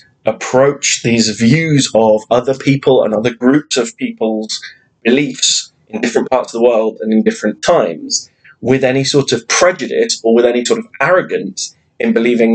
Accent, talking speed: British, 165 wpm